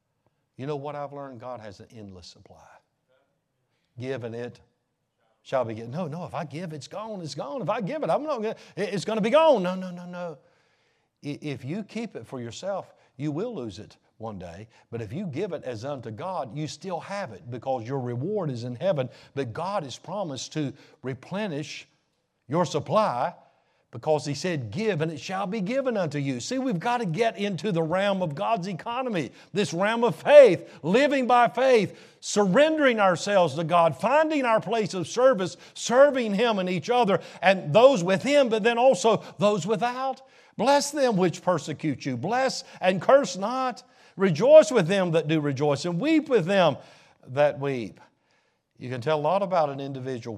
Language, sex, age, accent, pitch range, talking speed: English, male, 60-79, American, 140-220 Hz, 190 wpm